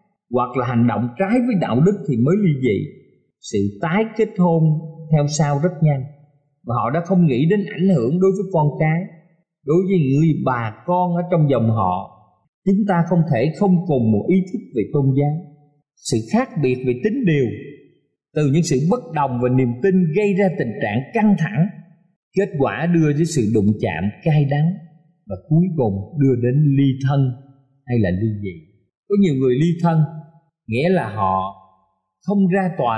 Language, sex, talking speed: Vietnamese, male, 190 wpm